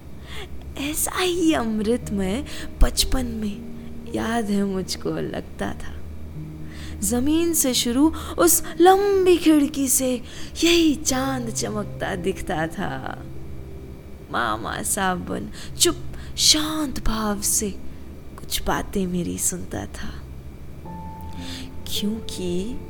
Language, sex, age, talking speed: Hindi, female, 20-39, 90 wpm